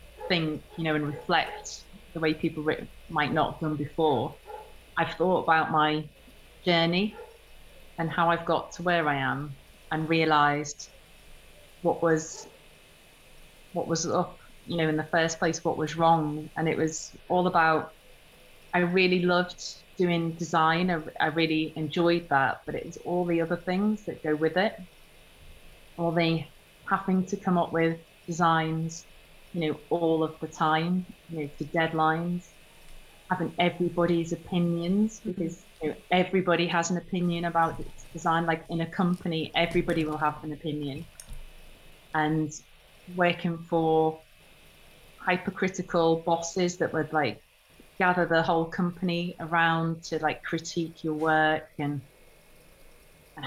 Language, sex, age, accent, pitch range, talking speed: English, female, 30-49, British, 155-175 Hz, 145 wpm